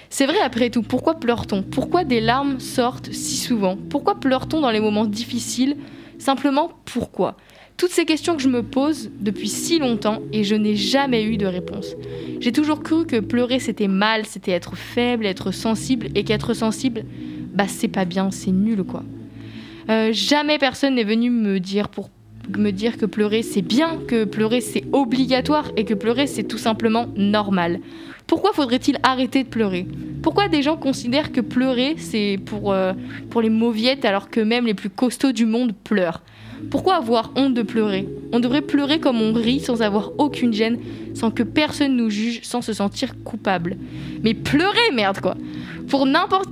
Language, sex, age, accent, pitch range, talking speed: French, female, 20-39, French, 210-275 Hz, 180 wpm